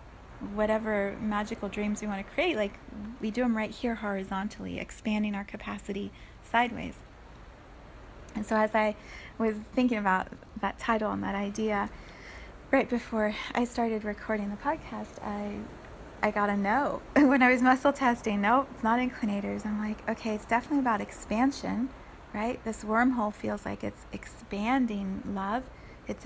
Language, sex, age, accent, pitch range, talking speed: English, female, 30-49, American, 210-240 Hz, 155 wpm